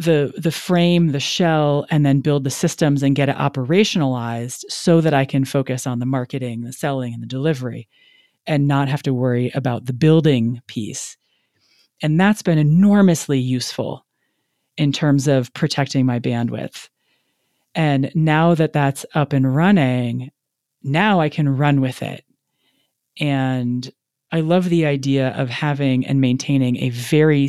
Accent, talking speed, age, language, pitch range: American, 155 wpm, 30-49, English, 130-165 Hz